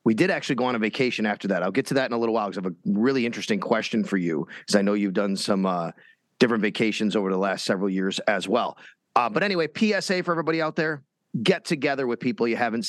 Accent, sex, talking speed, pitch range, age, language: American, male, 260 wpm, 115-165 Hz, 30-49, English